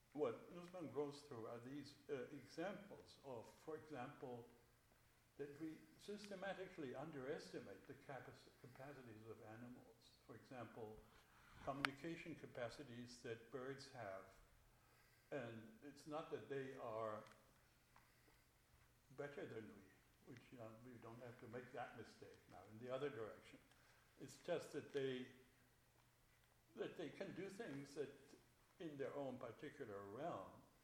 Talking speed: 130 wpm